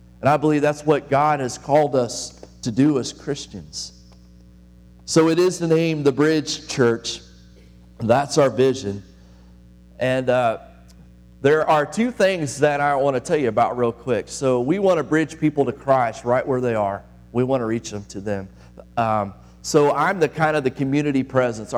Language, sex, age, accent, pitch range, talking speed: English, male, 40-59, American, 105-135 Hz, 180 wpm